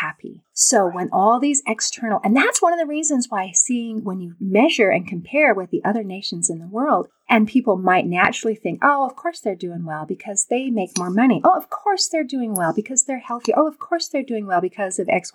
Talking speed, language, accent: 235 wpm, English, American